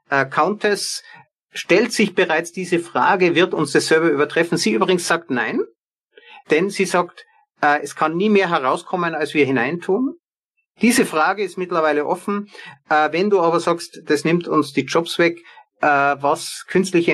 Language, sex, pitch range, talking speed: German, male, 140-185 Hz, 165 wpm